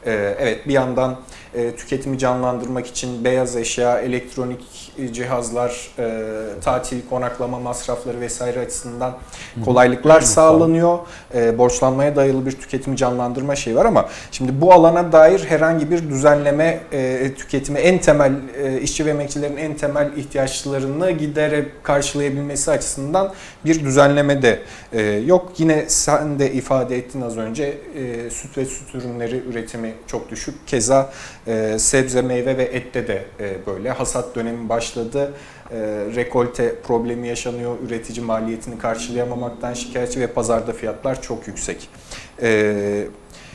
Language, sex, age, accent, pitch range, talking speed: Turkish, male, 40-59, native, 120-145 Hz, 125 wpm